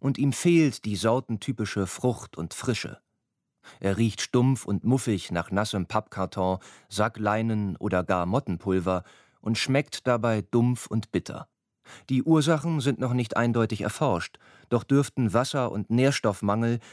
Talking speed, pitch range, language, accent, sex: 135 wpm, 100-130 Hz, German, German, male